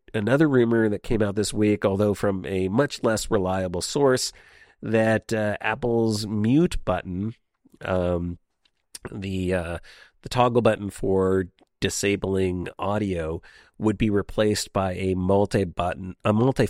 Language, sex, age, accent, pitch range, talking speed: English, male, 40-59, American, 85-110 Hz, 135 wpm